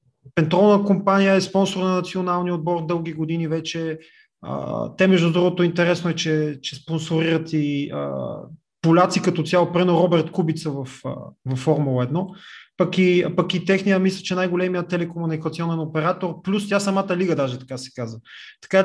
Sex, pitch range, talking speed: male, 160-195 Hz, 160 wpm